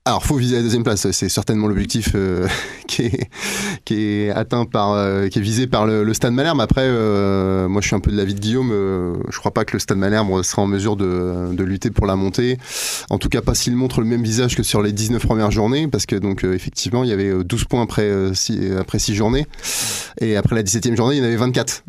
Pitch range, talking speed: 100-120 Hz, 260 wpm